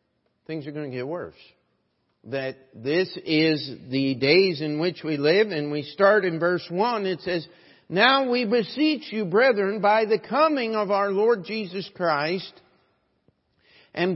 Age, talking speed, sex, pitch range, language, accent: 50-69, 155 wpm, male, 180-225 Hz, English, American